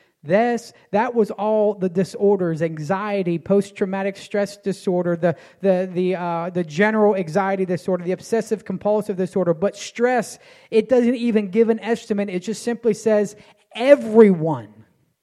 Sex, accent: male, American